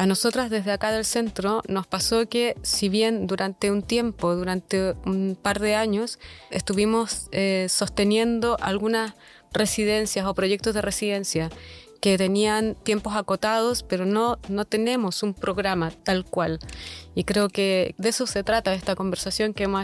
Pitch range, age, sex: 190-215 Hz, 20-39, female